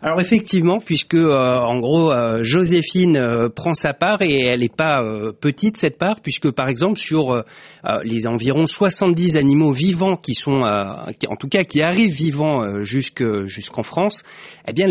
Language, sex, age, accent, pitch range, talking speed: French, male, 30-49, French, 125-170 Hz, 180 wpm